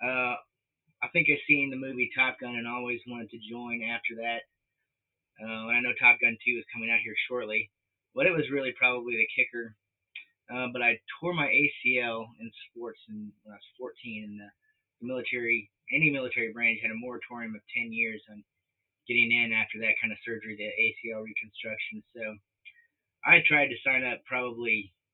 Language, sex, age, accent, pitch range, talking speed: English, male, 30-49, American, 110-125 Hz, 185 wpm